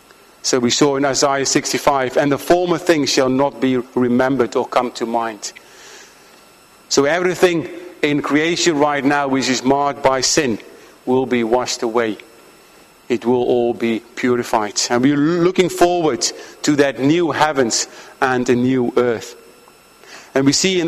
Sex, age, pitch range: male, 50-69, 130-170 Hz